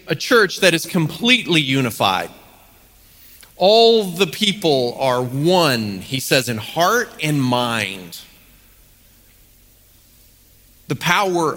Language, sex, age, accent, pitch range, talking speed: English, male, 40-59, American, 120-185 Hz, 100 wpm